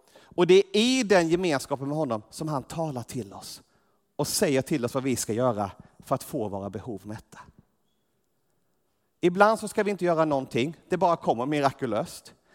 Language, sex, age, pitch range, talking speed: Swedish, male, 30-49, 140-195 Hz, 180 wpm